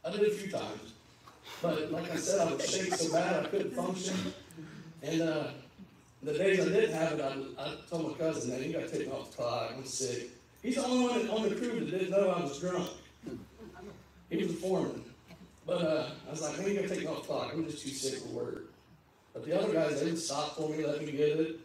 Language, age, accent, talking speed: English, 40-59, American, 250 wpm